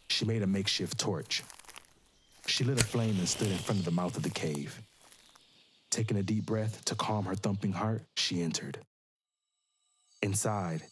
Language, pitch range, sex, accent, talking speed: English, 90-110 Hz, male, American, 170 wpm